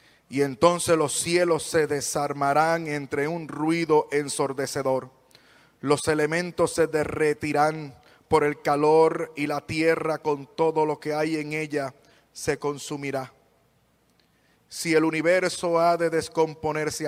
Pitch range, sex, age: 140-165 Hz, male, 30-49